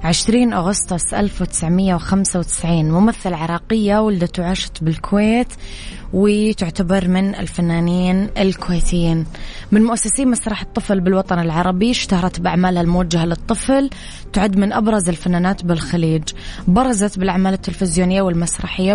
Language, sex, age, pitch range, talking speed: Arabic, female, 20-39, 180-200 Hz, 100 wpm